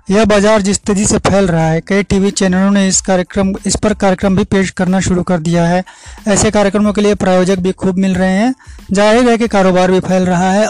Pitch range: 185-215 Hz